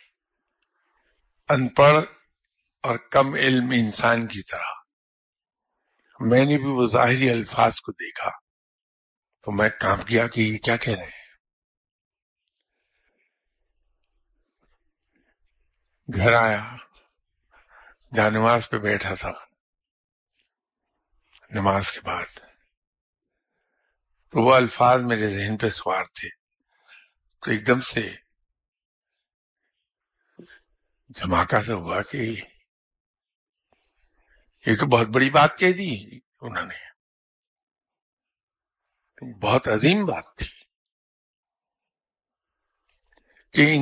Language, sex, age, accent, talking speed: English, male, 50-69, Indian, 80 wpm